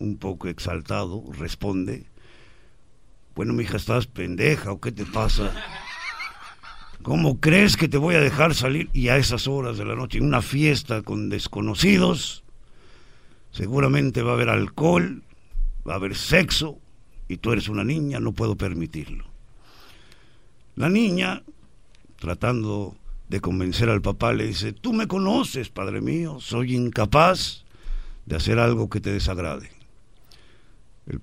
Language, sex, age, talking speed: Spanish, male, 60-79, 140 wpm